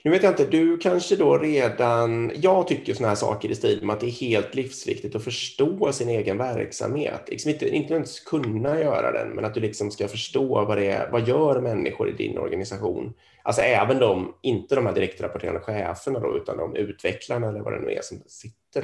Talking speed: 210 wpm